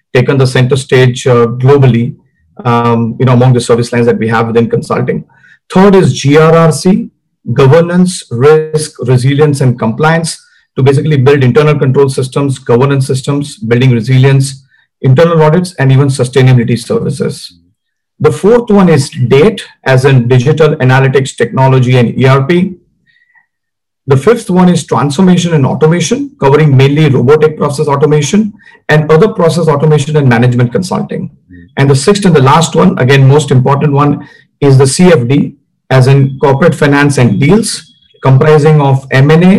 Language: English